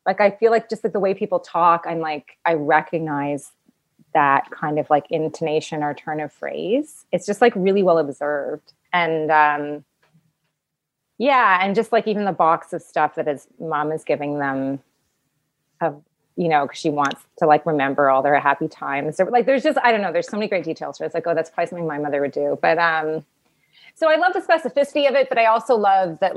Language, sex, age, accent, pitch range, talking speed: English, female, 30-49, American, 150-190 Hz, 225 wpm